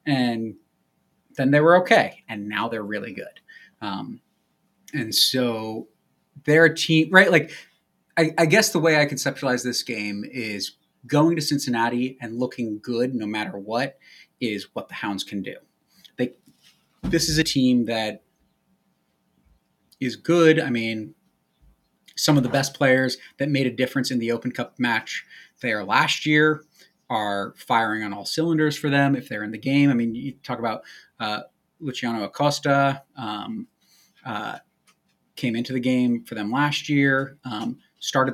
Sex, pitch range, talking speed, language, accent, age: male, 115-145 Hz, 160 wpm, English, American, 30-49